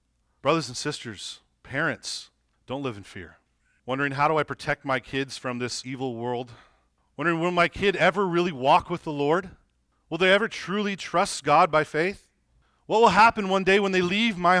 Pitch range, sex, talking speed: 120-175 Hz, male, 190 wpm